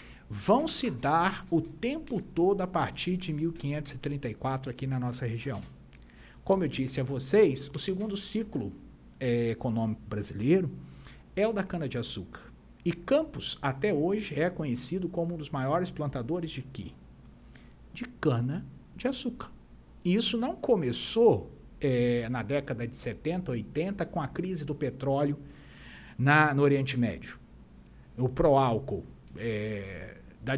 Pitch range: 120-180 Hz